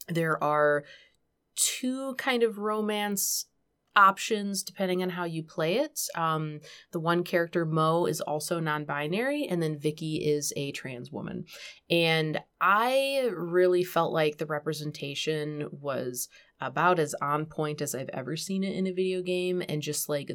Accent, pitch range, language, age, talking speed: American, 150-190 Hz, English, 20-39, 155 wpm